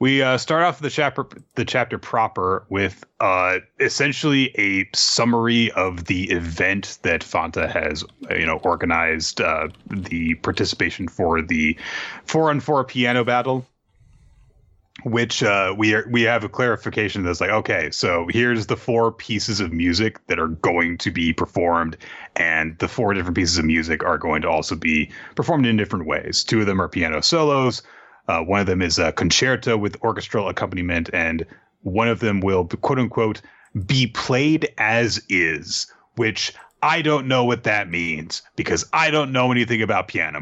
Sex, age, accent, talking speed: male, 30-49, American, 170 wpm